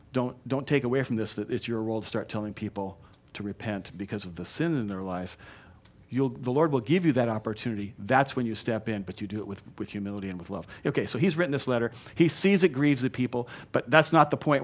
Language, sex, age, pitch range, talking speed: English, male, 50-69, 105-140 Hz, 255 wpm